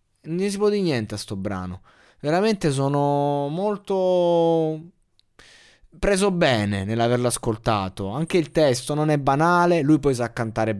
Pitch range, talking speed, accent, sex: 115-155 Hz, 140 wpm, native, male